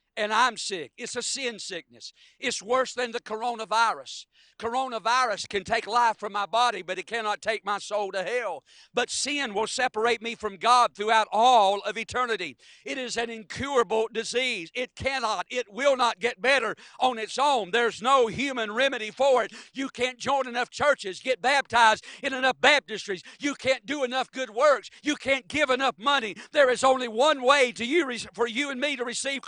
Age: 60-79